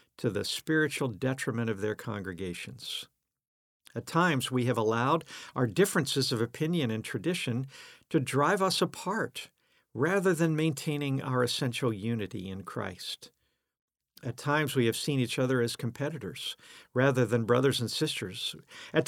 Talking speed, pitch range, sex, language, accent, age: 140 wpm, 120-160 Hz, male, English, American, 50-69